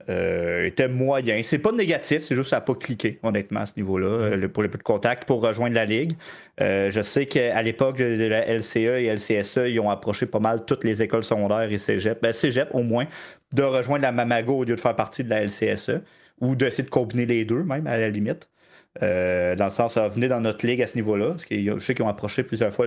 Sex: male